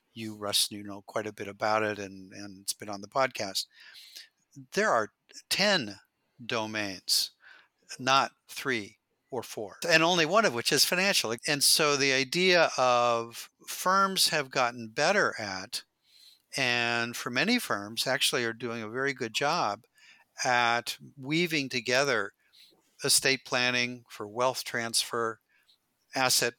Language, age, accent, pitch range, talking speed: English, 50-69, American, 110-135 Hz, 140 wpm